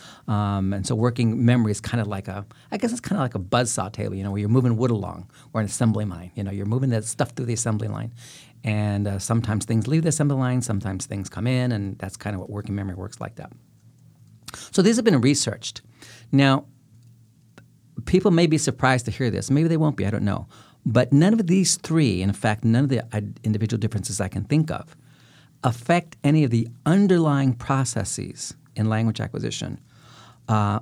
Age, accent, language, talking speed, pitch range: 40-59, American, English, 210 wpm, 110-135 Hz